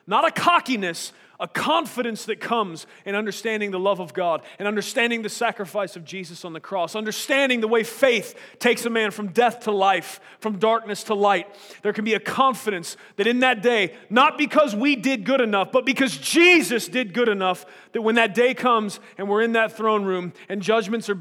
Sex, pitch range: male, 195-240 Hz